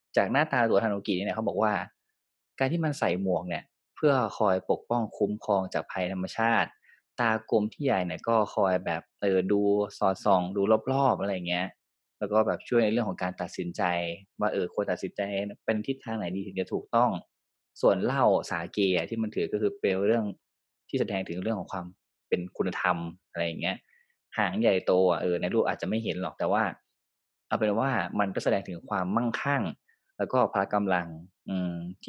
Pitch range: 95-125 Hz